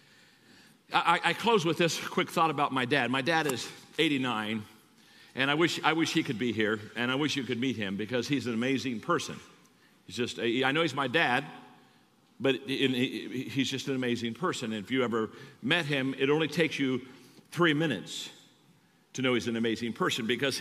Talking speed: 200 wpm